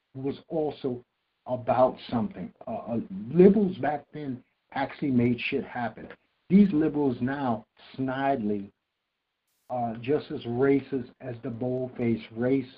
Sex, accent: male, American